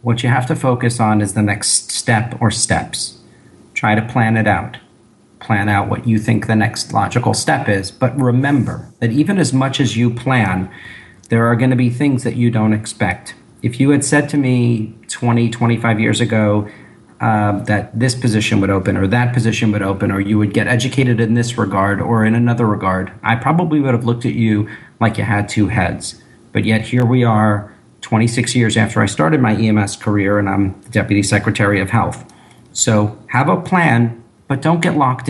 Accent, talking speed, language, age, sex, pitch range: American, 200 wpm, English, 40-59, male, 105-125 Hz